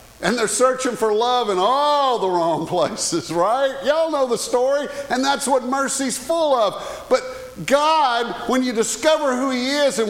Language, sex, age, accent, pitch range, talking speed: English, male, 50-69, American, 185-265 Hz, 180 wpm